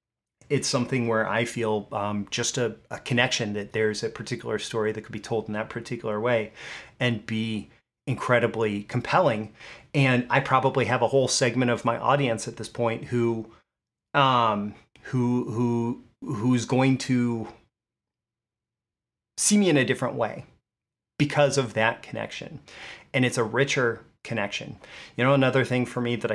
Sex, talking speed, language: male, 155 wpm, English